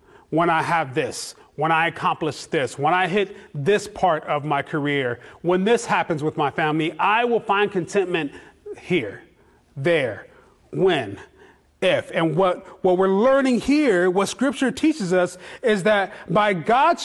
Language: English